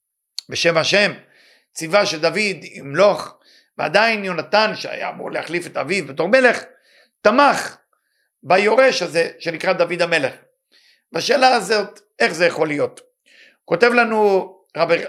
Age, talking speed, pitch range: 50-69, 125 wpm, 170-235 Hz